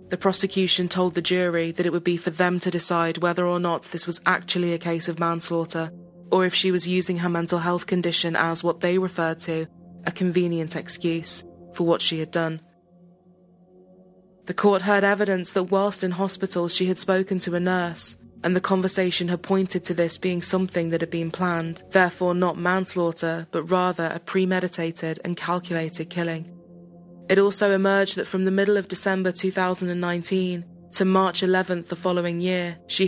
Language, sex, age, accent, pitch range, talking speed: English, female, 20-39, British, 170-185 Hz, 180 wpm